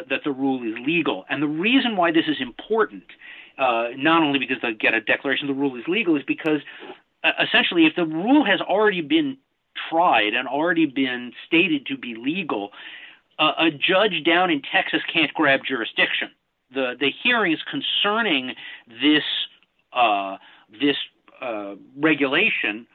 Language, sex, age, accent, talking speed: English, male, 50-69, American, 155 wpm